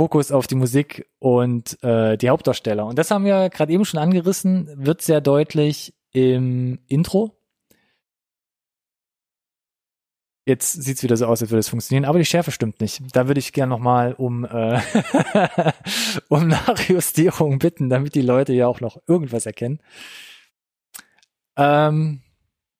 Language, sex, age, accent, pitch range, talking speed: German, male, 20-39, German, 125-160 Hz, 145 wpm